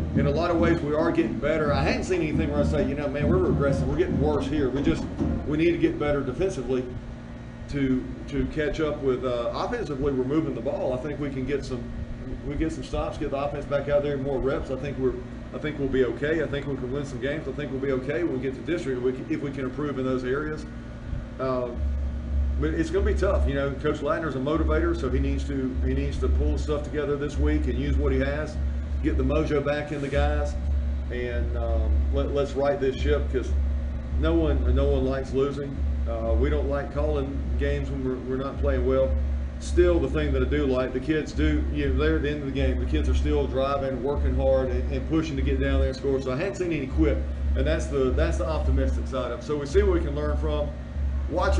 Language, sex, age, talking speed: English, male, 40-59, 255 wpm